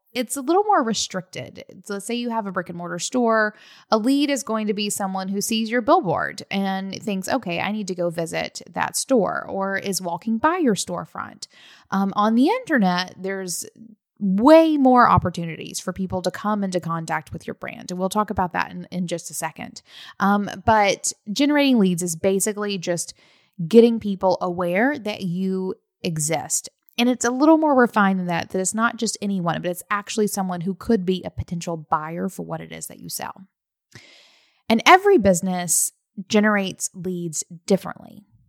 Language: English